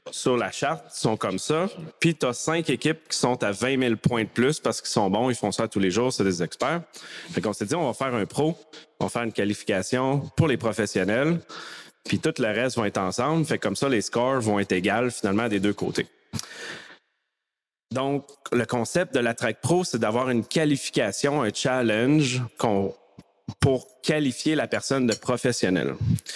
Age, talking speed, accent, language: 30-49, 205 wpm, Canadian, French